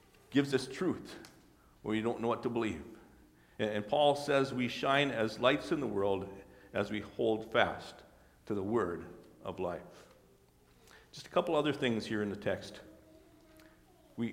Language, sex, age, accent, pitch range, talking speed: English, male, 50-69, American, 100-125 Hz, 165 wpm